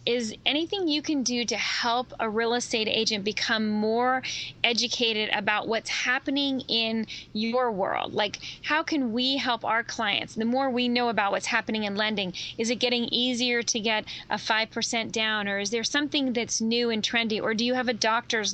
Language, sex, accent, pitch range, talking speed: English, female, American, 210-250 Hz, 190 wpm